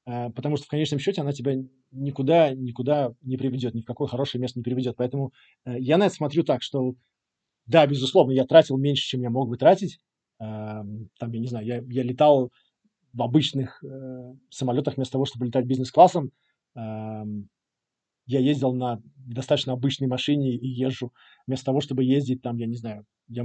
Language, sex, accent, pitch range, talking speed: Russian, male, native, 125-145 Hz, 165 wpm